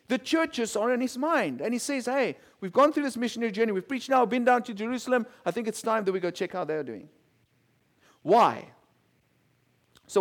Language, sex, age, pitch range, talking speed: English, male, 50-69, 170-245 Hz, 220 wpm